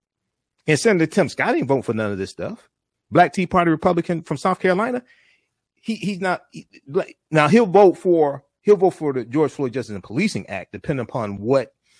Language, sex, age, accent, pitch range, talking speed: English, male, 40-59, American, 110-165 Hz, 195 wpm